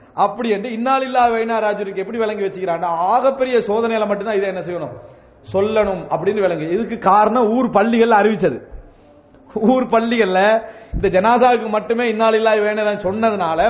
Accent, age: Indian, 30-49